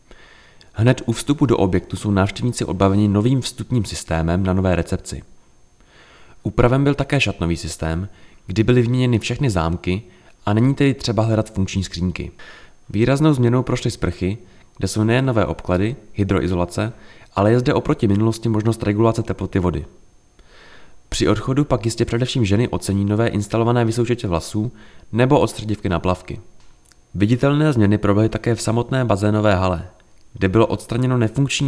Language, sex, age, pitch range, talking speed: Czech, male, 20-39, 95-120 Hz, 145 wpm